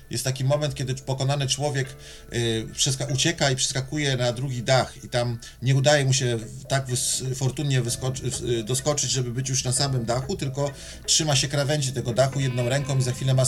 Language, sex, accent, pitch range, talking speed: Polish, male, native, 115-135 Hz, 175 wpm